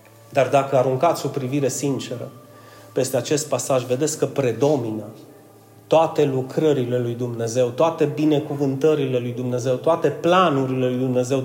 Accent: native